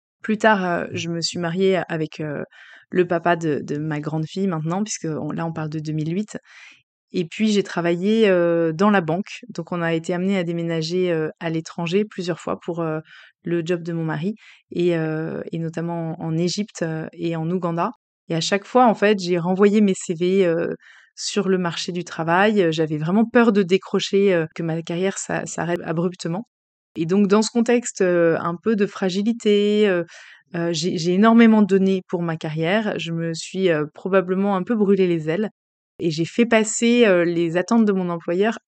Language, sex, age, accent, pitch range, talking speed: French, female, 20-39, French, 165-200 Hz, 175 wpm